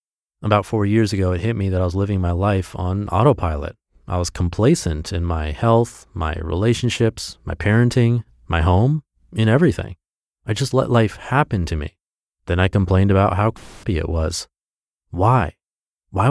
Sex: male